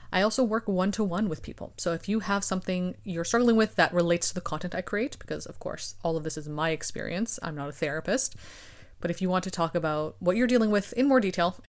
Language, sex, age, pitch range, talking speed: English, female, 30-49, 170-220 Hz, 245 wpm